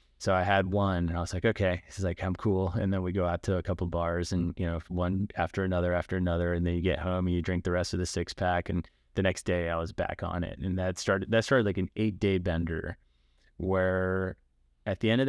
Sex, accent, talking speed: male, American, 270 wpm